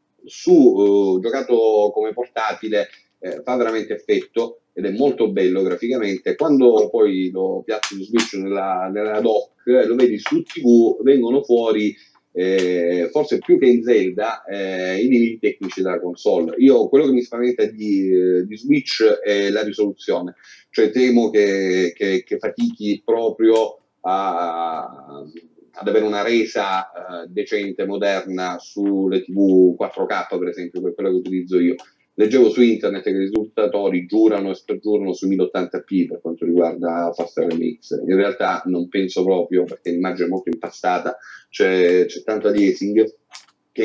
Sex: male